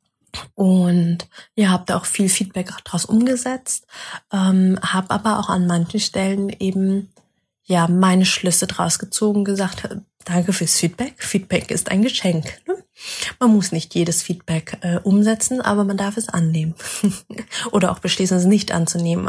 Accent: German